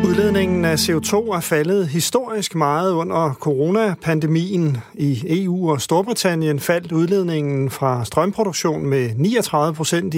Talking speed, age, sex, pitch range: 110 wpm, 40-59, male, 140-180 Hz